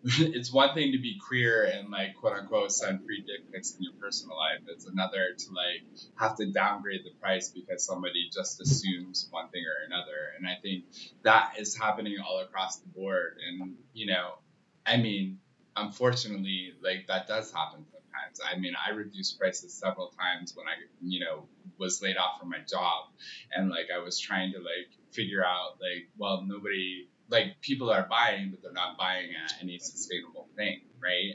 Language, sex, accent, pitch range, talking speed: English, male, American, 90-115 Hz, 185 wpm